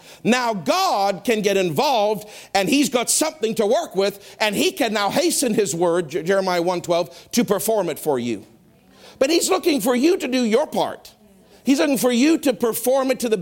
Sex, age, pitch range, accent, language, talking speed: male, 50-69, 200-270 Hz, American, English, 195 wpm